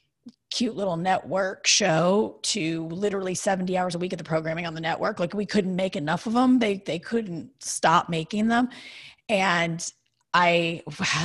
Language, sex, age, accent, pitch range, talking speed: English, female, 30-49, American, 165-220 Hz, 170 wpm